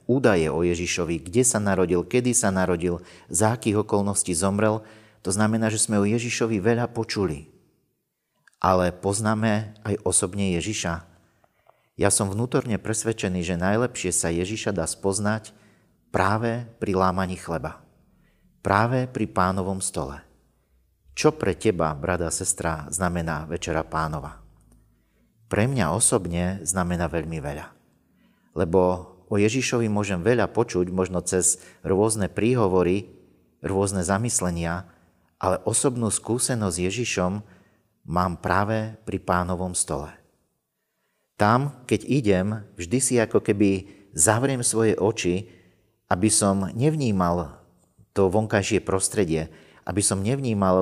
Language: Slovak